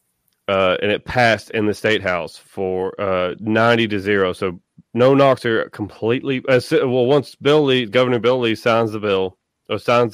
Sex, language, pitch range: male, English, 100-120 Hz